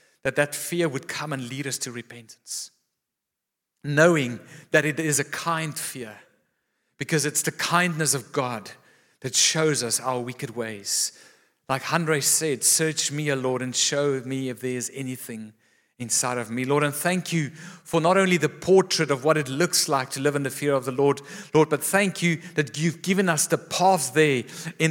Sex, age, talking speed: male, 50-69, 195 wpm